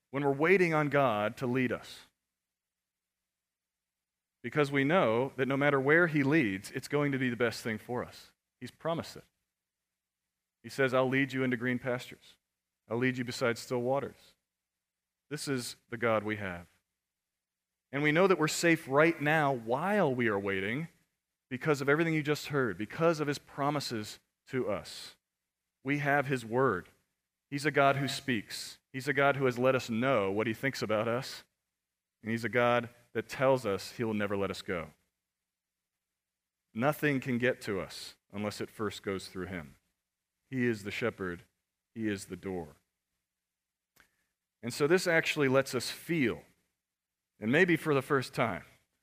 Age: 40-59